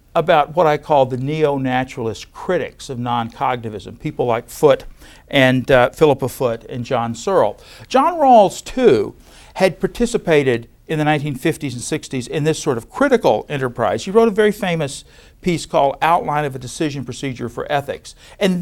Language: English